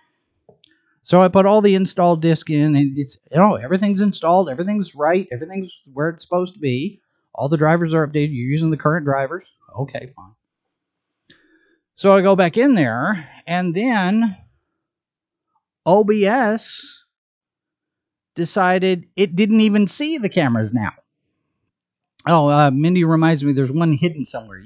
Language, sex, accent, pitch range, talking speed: English, male, American, 135-195 Hz, 150 wpm